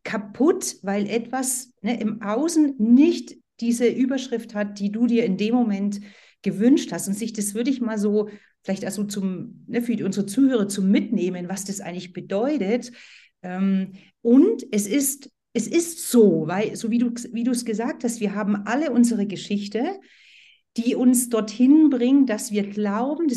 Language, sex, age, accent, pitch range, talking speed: German, female, 40-59, German, 205-250 Hz, 165 wpm